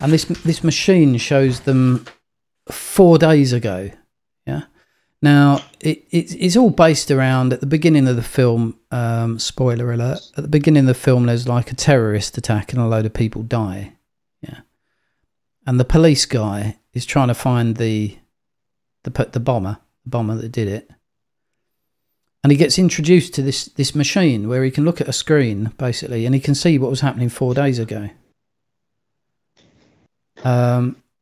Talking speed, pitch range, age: 170 wpm, 120-150 Hz, 40-59